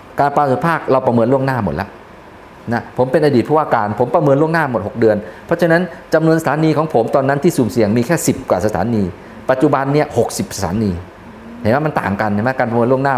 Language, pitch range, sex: Thai, 115-160 Hz, male